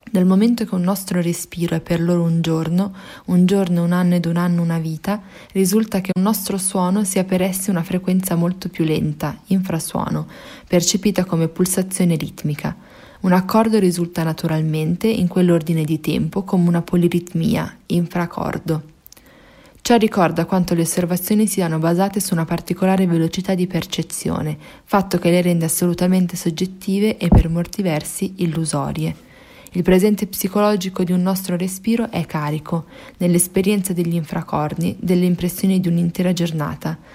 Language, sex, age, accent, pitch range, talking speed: Italian, female, 20-39, native, 170-195 Hz, 145 wpm